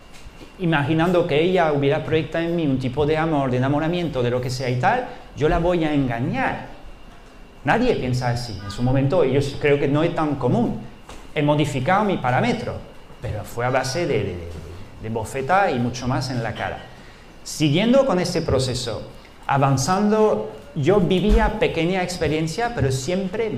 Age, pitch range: 40-59, 125-165 Hz